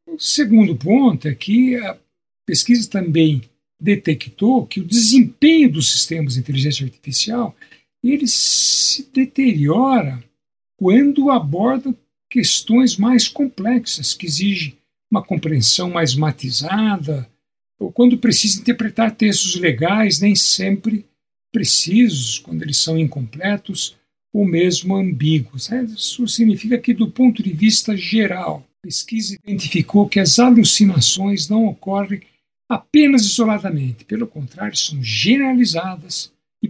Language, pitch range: Portuguese, 155-225 Hz